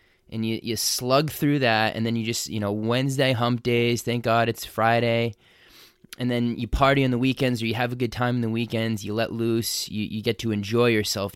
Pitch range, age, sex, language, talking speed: 110-135 Hz, 20-39, male, English, 230 wpm